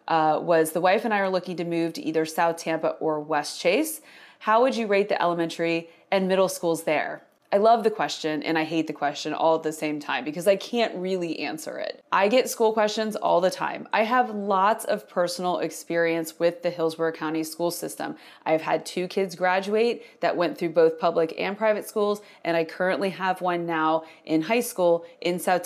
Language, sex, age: English, female, 20-39